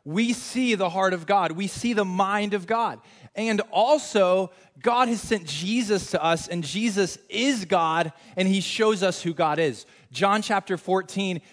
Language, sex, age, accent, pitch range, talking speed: English, male, 20-39, American, 150-205 Hz, 175 wpm